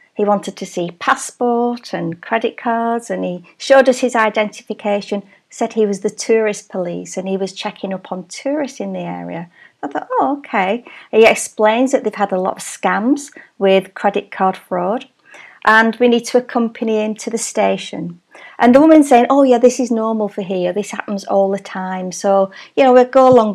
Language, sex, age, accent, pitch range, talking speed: English, female, 40-59, British, 200-255 Hz, 200 wpm